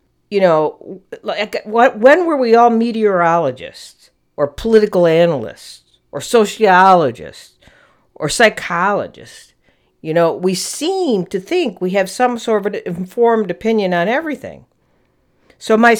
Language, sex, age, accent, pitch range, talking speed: English, female, 50-69, American, 145-225 Hz, 125 wpm